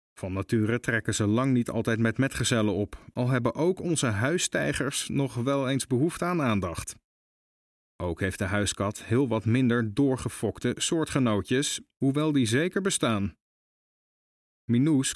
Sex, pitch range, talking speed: male, 105-140 Hz, 140 wpm